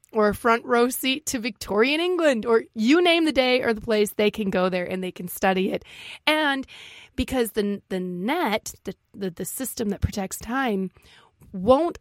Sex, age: female, 30-49